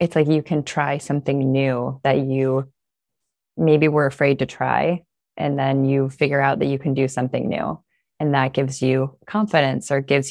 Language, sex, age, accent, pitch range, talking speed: English, female, 20-39, American, 135-155 Hz, 185 wpm